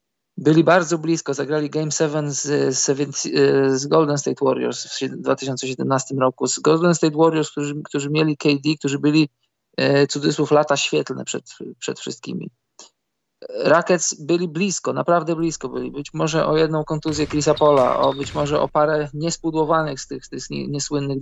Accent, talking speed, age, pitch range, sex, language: native, 145 wpm, 20-39, 135-160 Hz, male, Polish